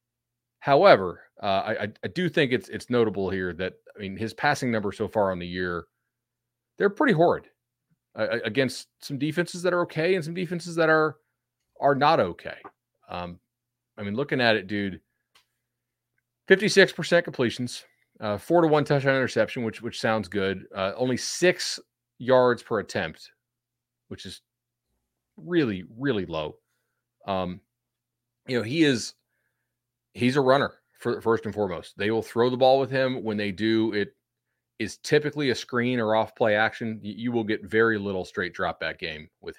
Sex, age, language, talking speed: male, 30-49, English, 165 wpm